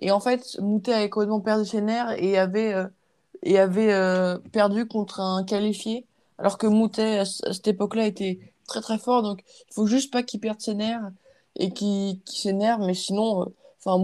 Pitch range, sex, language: 190-225 Hz, female, French